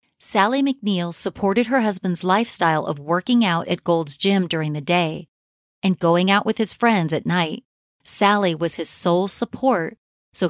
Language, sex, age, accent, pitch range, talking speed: English, female, 30-49, American, 165-215 Hz, 165 wpm